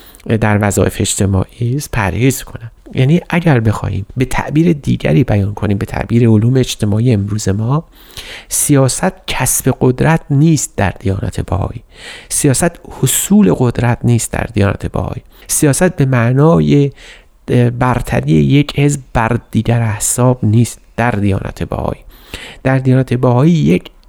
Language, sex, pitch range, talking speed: Persian, male, 105-135 Hz, 125 wpm